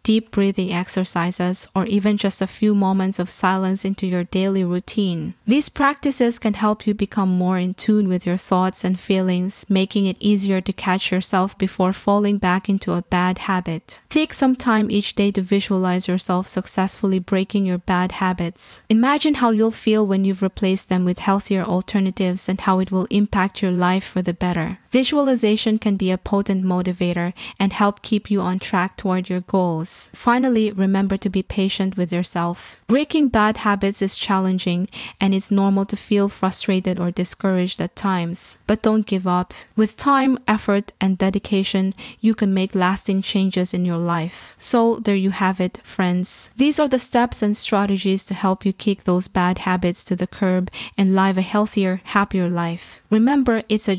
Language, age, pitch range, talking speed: English, 20-39, 185-210 Hz, 180 wpm